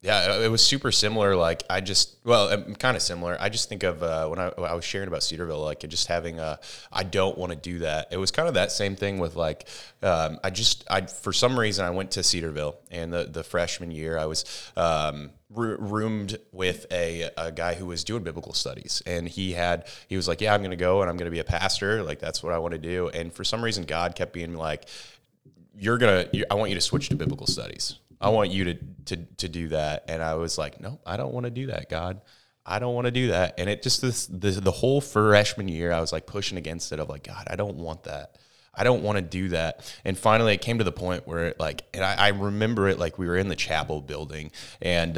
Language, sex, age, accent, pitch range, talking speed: English, male, 20-39, American, 85-105 Hz, 260 wpm